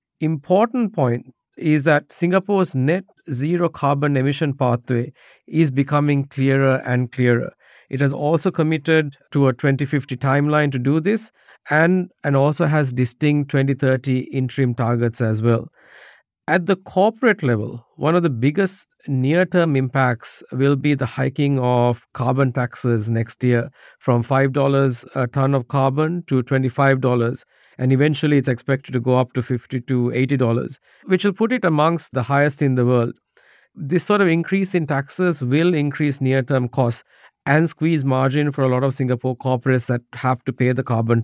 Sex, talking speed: male, 160 wpm